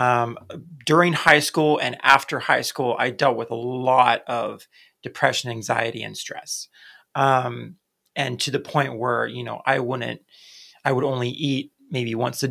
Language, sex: English, male